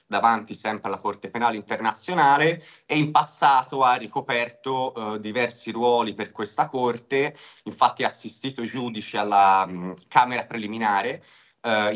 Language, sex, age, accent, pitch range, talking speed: Italian, male, 30-49, native, 100-130 Hz, 135 wpm